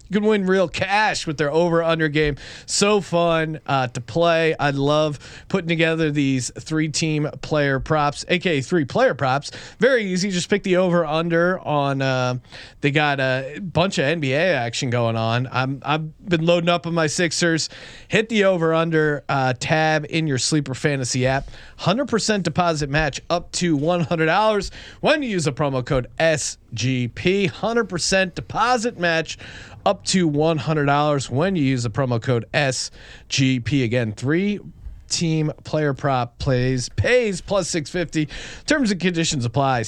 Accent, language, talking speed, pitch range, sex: American, English, 160 wpm, 135-190 Hz, male